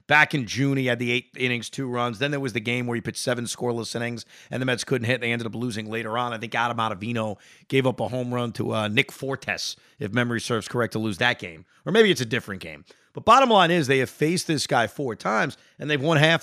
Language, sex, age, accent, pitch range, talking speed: English, male, 30-49, American, 115-145 Hz, 270 wpm